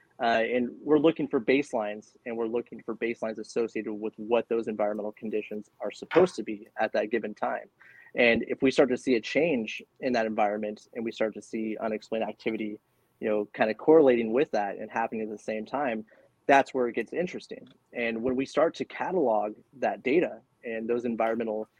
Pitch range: 110-125 Hz